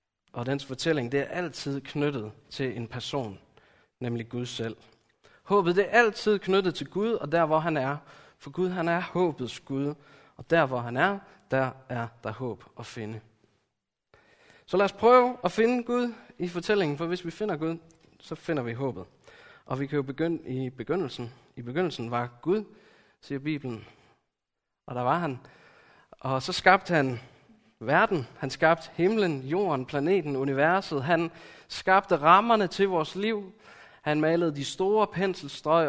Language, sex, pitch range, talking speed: Danish, male, 125-175 Hz, 165 wpm